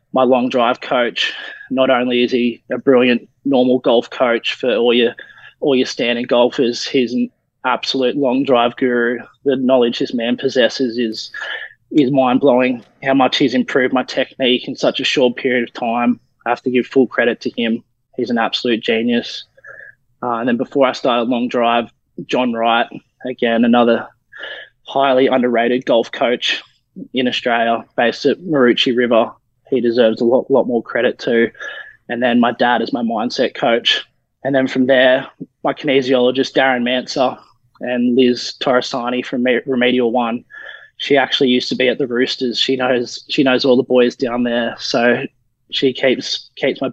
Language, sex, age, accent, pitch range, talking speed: English, male, 20-39, Australian, 120-130 Hz, 170 wpm